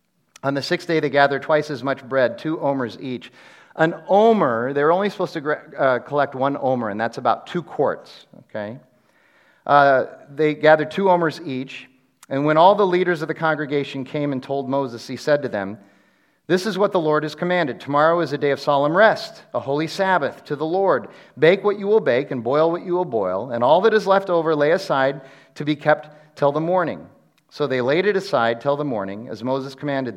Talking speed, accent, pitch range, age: 215 wpm, American, 135-180 Hz, 40-59